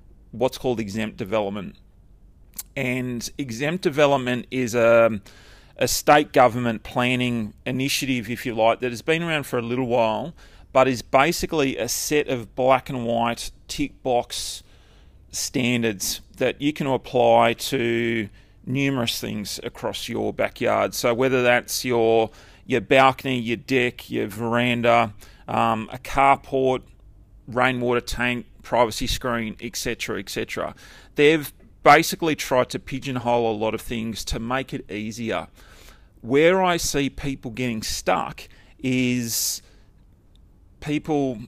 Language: English